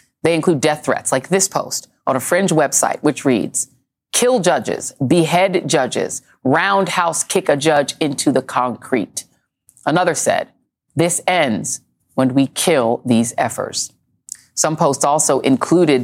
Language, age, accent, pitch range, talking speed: English, 40-59, American, 135-195 Hz, 140 wpm